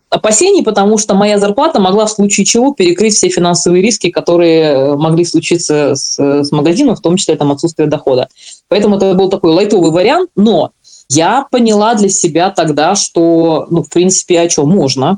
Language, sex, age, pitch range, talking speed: Russian, female, 20-39, 155-200 Hz, 175 wpm